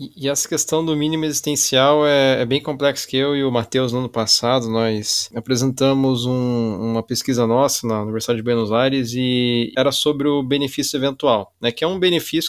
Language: Portuguese